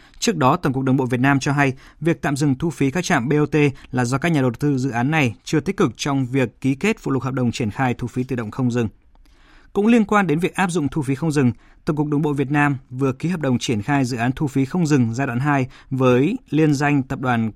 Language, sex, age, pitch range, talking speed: Vietnamese, male, 20-39, 125-150 Hz, 285 wpm